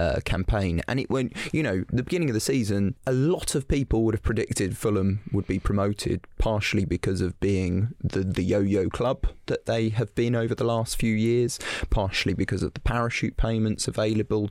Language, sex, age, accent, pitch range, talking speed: English, male, 20-39, British, 95-115 Hz, 200 wpm